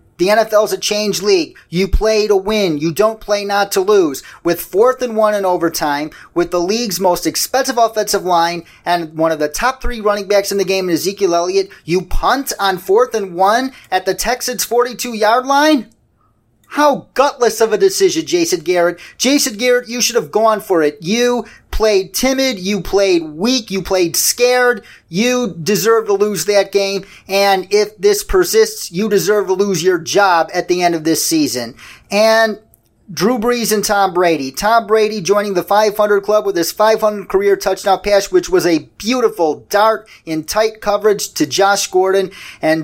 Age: 30-49